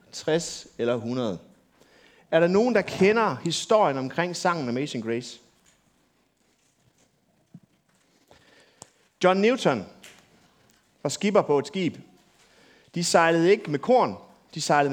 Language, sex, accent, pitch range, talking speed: Danish, male, native, 145-195 Hz, 110 wpm